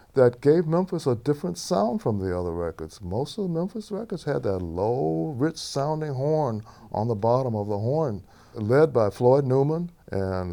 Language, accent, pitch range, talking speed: English, American, 105-145 Hz, 175 wpm